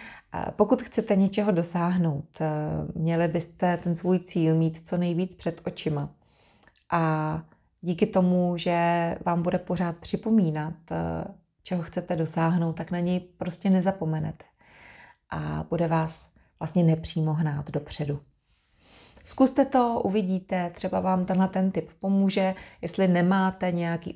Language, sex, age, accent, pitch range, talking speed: Czech, female, 30-49, native, 160-185 Hz, 120 wpm